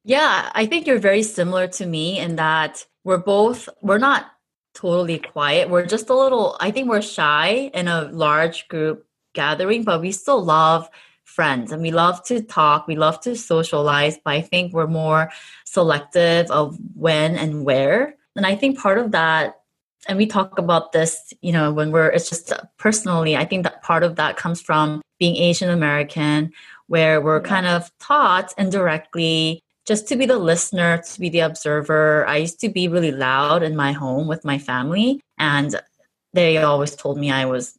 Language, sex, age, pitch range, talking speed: English, female, 20-39, 155-195 Hz, 185 wpm